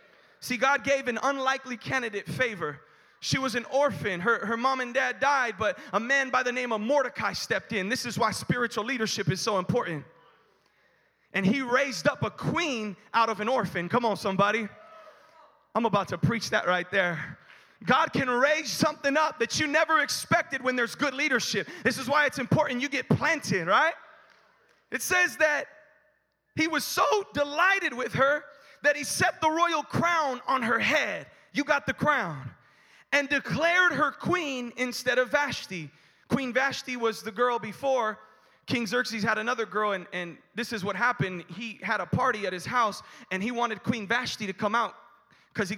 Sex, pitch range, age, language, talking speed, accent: male, 200-280 Hz, 30-49, English, 185 wpm, American